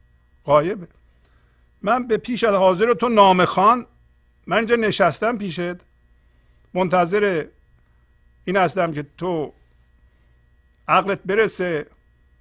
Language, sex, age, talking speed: Persian, male, 50-69, 95 wpm